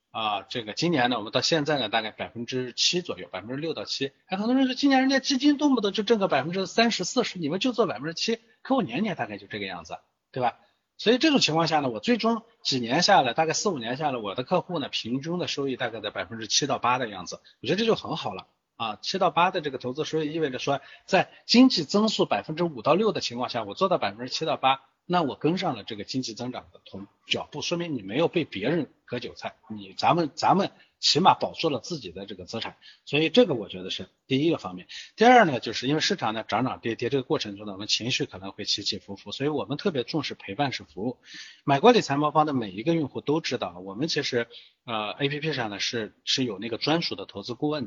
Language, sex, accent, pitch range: Chinese, male, native, 120-180 Hz